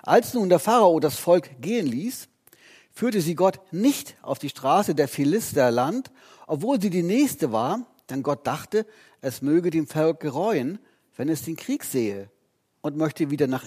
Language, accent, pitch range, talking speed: German, German, 140-205 Hz, 170 wpm